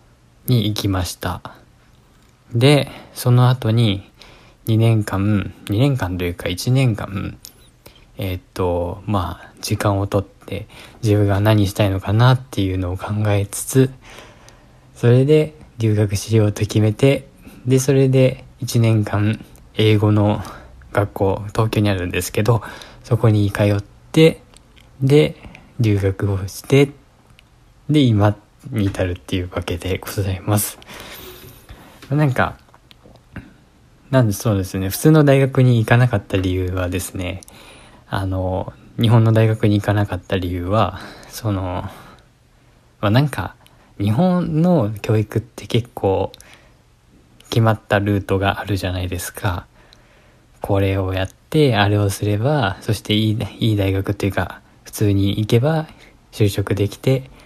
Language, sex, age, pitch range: Japanese, male, 20-39, 100-120 Hz